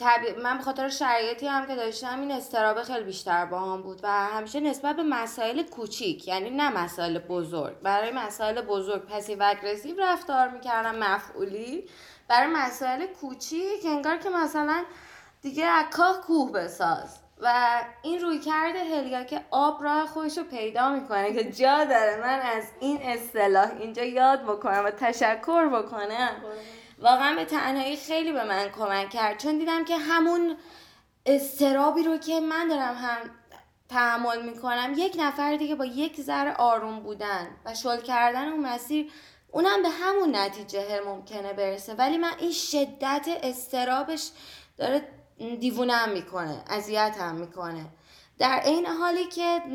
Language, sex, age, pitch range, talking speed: Persian, female, 20-39, 215-305 Hz, 150 wpm